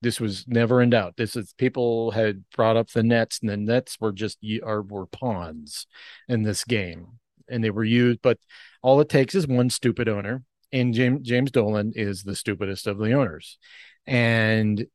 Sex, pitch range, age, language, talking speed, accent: male, 105-125 Hz, 40-59, English, 180 wpm, American